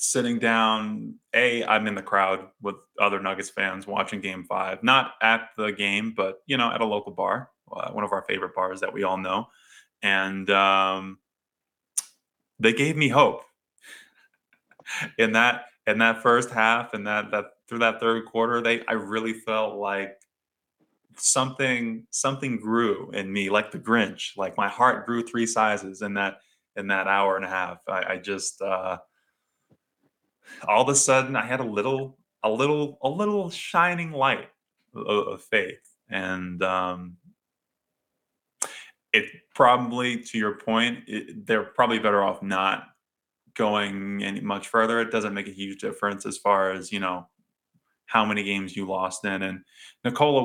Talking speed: 165 wpm